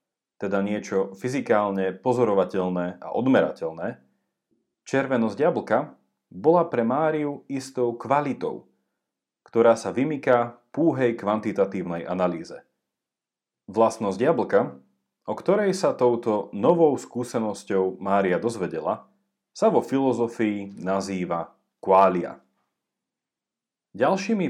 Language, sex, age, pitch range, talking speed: Slovak, male, 40-59, 95-125 Hz, 85 wpm